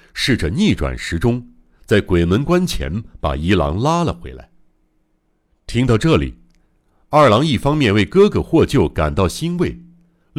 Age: 60-79